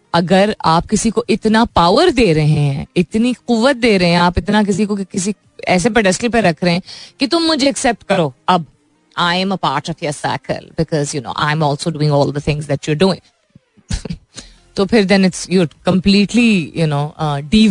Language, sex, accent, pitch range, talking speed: Hindi, female, native, 160-220 Hz, 175 wpm